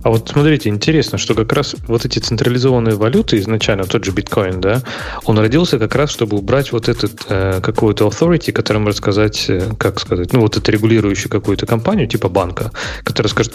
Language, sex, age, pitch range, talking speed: Russian, male, 20-39, 100-125 Hz, 180 wpm